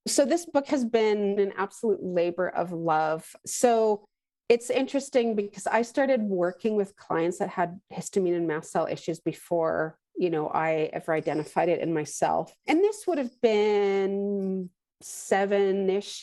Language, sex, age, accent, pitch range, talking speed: English, female, 40-59, American, 180-235 Hz, 150 wpm